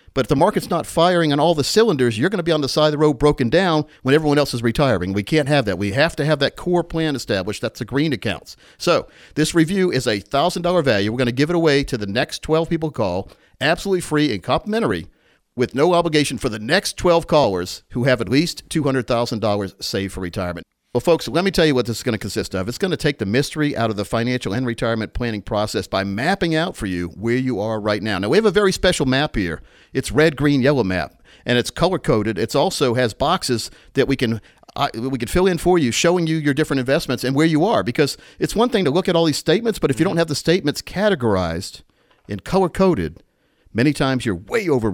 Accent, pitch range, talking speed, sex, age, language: American, 115-160 Hz, 245 wpm, male, 50-69, English